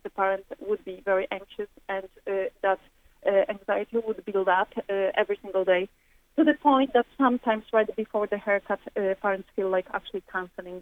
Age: 30-49